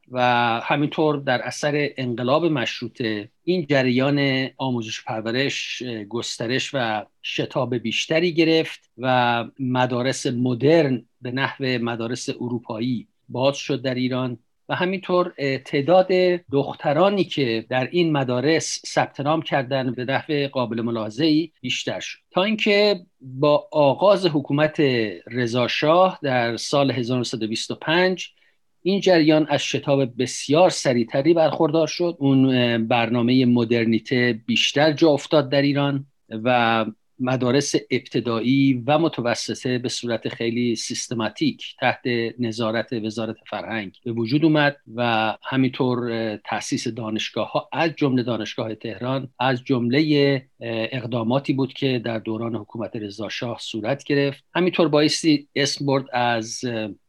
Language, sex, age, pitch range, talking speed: Persian, male, 50-69, 120-145 Hz, 115 wpm